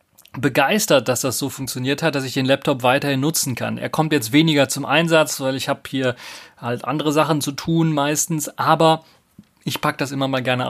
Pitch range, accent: 120-150 Hz, German